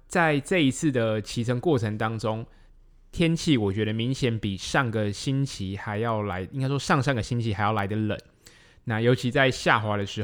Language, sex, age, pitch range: Chinese, male, 20-39, 100-130 Hz